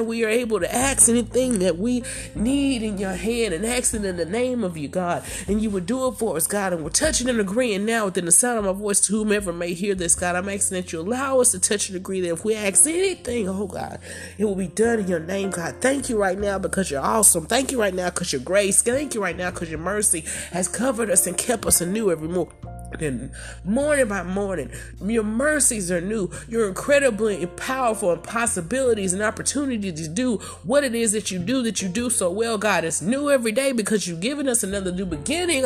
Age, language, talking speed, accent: 30-49, English, 235 wpm, American